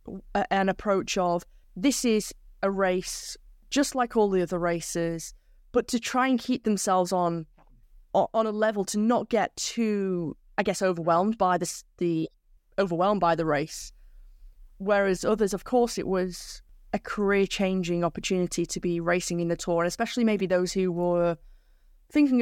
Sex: female